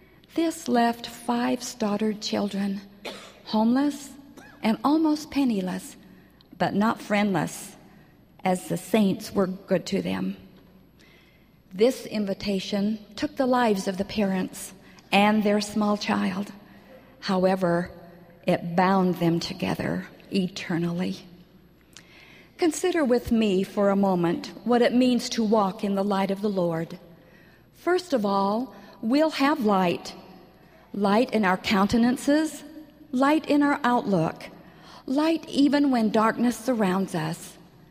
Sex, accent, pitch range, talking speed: female, American, 185-245 Hz, 115 wpm